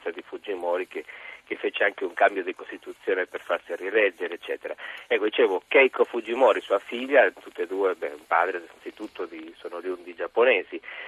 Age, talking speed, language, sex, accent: 50-69, 180 wpm, Italian, male, native